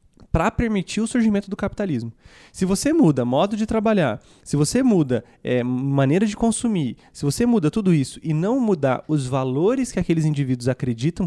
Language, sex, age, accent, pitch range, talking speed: English, male, 20-39, Brazilian, 140-185 Hz, 175 wpm